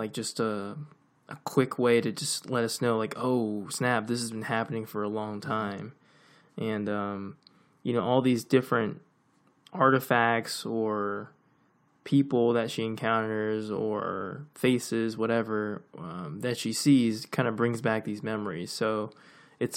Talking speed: 150 wpm